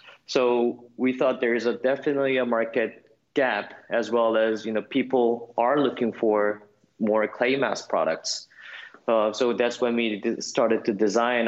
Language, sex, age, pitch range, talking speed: English, male, 20-39, 100-120 Hz, 160 wpm